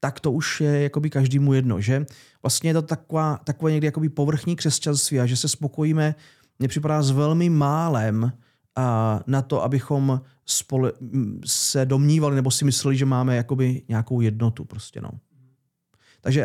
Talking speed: 150 wpm